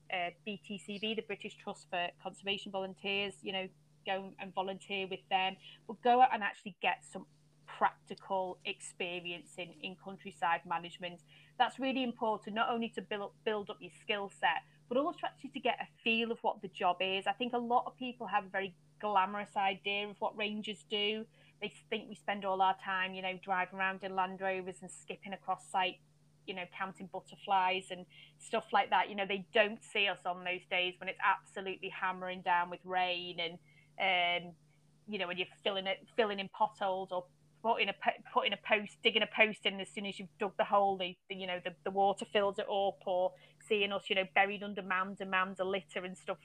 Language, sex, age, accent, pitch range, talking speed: English, female, 30-49, British, 180-210 Hz, 205 wpm